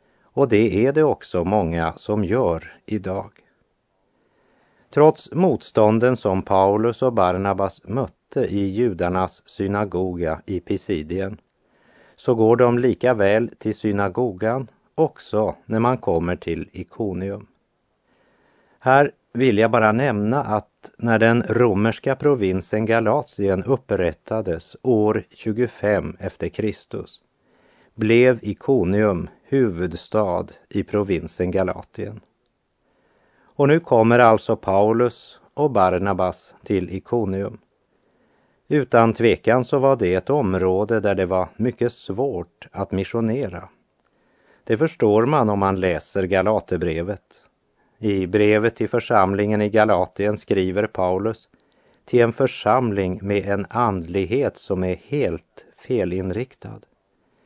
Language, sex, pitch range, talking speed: Russian, male, 95-120 Hz, 110 wpm